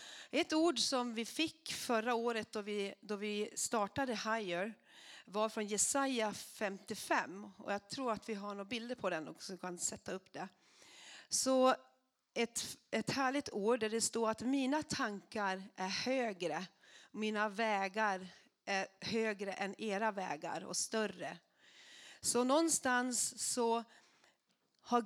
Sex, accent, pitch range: female, native, 200-255 Hz